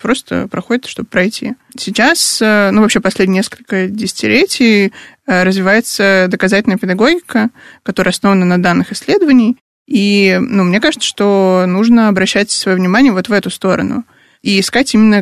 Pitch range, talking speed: 190-240 Hz, 135 wpm